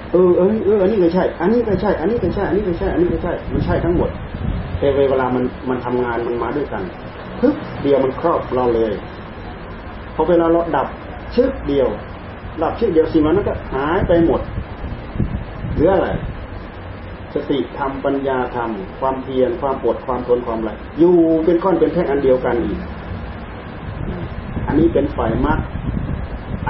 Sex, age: male, 30-49